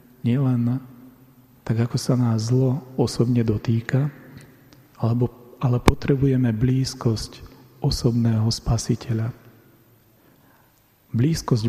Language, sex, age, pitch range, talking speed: Slovak, male, 40-59, 115-130 Hz, 75 wpm